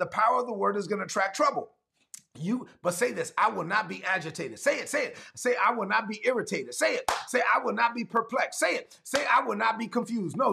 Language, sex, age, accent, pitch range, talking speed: English, male, 30-49, American, 170-245 Hz, 260 wpm